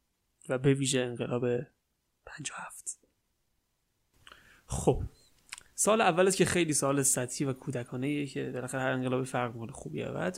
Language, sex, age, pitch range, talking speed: Persian, male, 30-49, 125-145 Hz, 140 wpm